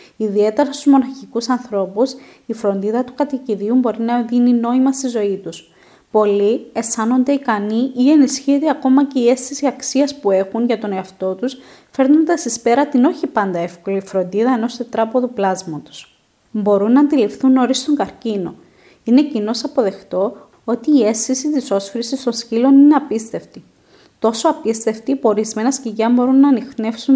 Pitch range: 210-265 Hz